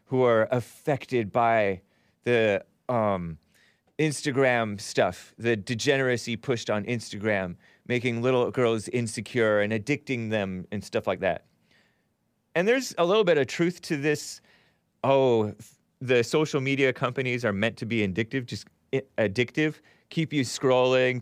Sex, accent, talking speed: male, American, 135 wpm